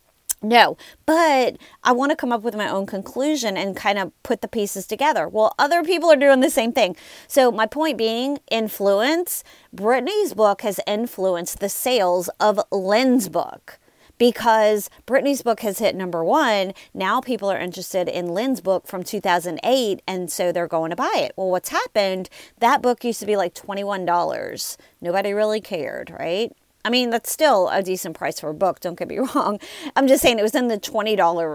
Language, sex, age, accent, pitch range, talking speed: English, female, 30-49, American, 185-260 Hz, 190 wpm